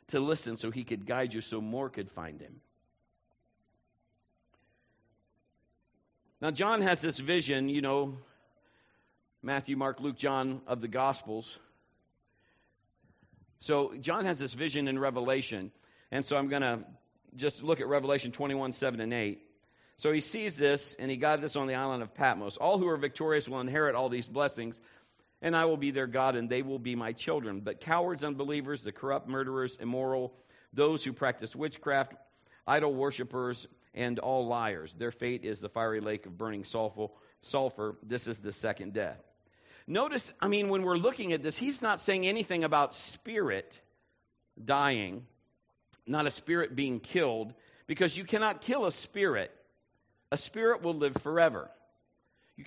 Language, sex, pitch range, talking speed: English, male, 115-150 Hz, 160 wpm